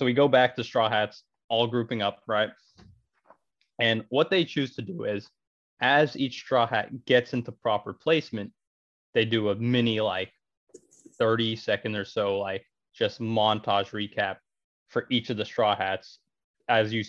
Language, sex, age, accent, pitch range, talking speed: English, male, 20-39, American, 100-120 Hz, 165 wpm